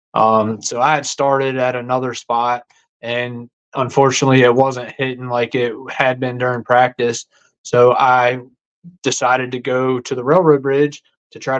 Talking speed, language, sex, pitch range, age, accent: 155 wpm, English, male, 125-150 Hz, 20-39, American